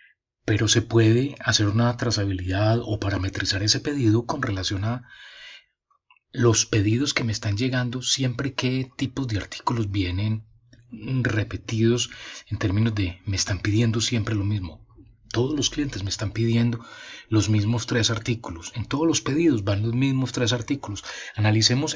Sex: male